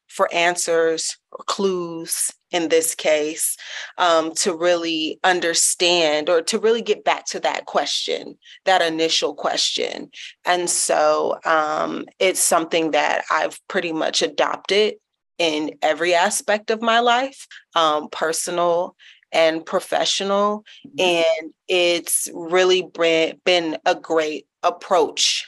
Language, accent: English, American